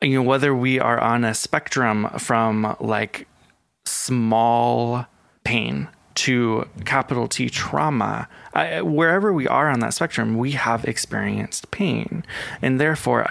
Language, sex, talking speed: English, male, 130 wpm